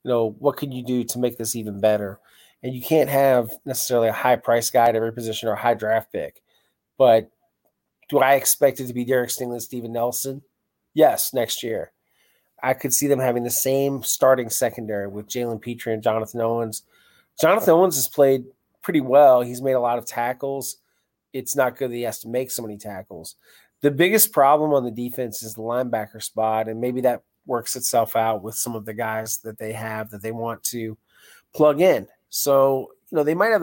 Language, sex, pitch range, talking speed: English, male, 115-135 Hz, 205 wpm